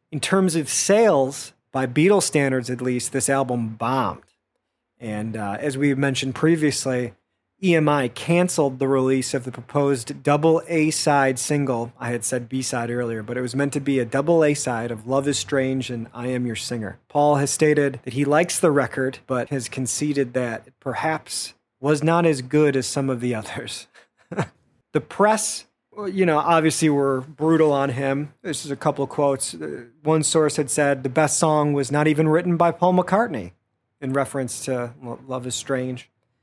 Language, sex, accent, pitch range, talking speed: English, male, American, 125-160 Hz, 185 wpm